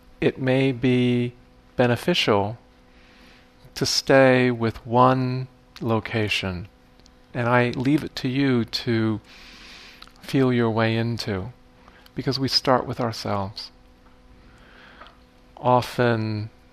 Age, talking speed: 40-59, 95 wpm